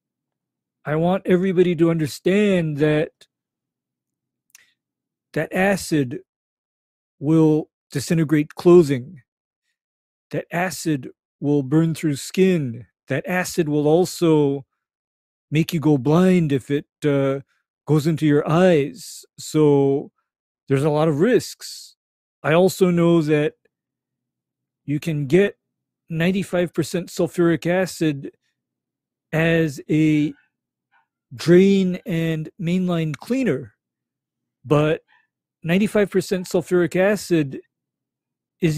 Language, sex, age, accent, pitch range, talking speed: English, male, 40-59, American, 150-180 Hz, 95 wpm